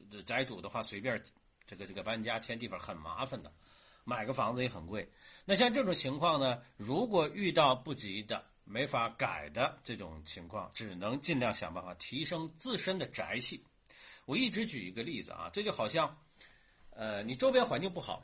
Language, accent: Chinese, native